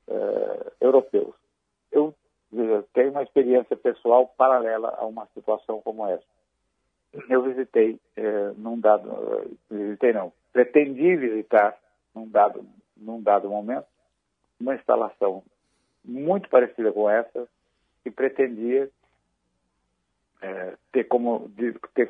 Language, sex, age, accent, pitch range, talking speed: Portuguese, male, 60-79, Brazilian, 105-130 Hz, 105 wpm